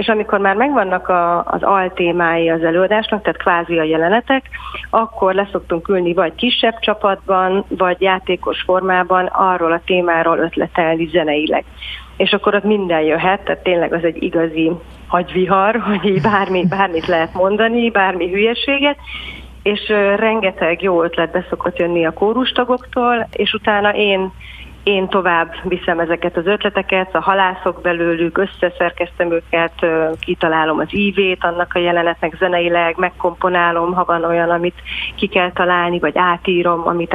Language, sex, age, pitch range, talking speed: Hungarian, female, 30-49, 170-195 Hz, 140 wpm